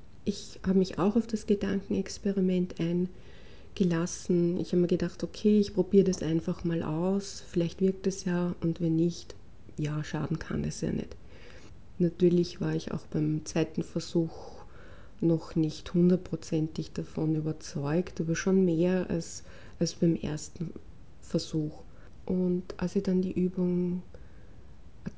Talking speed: 140 wpm